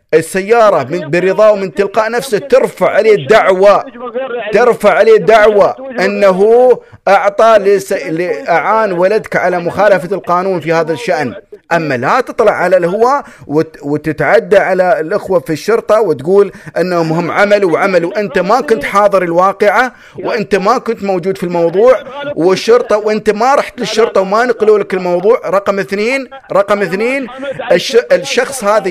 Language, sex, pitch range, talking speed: Arabic, male, 175-230 Hz, 130 wpm